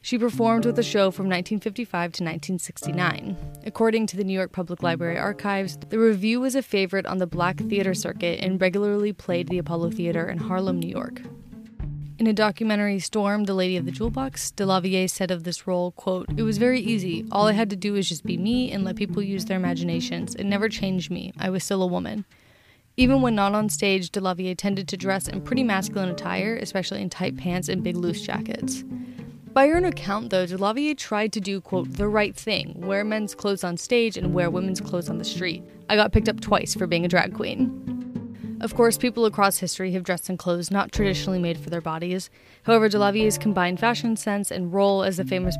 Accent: American